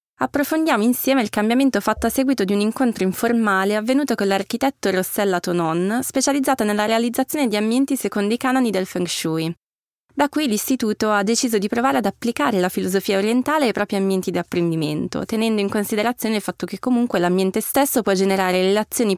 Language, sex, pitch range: Italian, female, 195-240 Hz